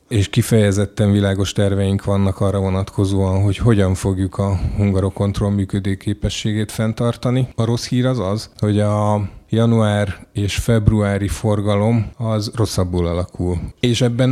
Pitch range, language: 100-110 Hz, English